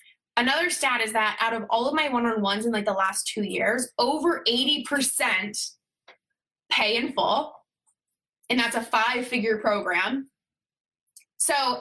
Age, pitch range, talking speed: 20-39, 210-275 Hz, 135 wpm